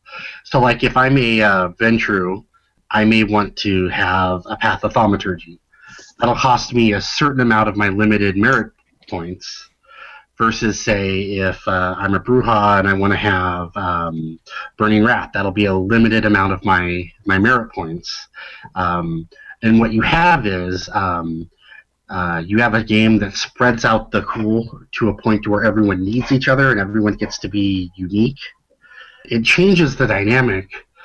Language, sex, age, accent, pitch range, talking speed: English, male, 30-49, American, 95-120 Hz, 170 wpm